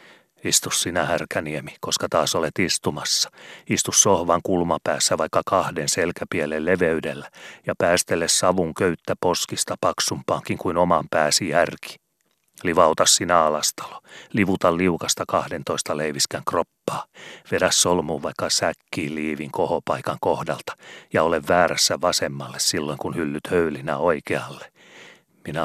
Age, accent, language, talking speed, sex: 40-59, native, Finnish, 115 wpm, male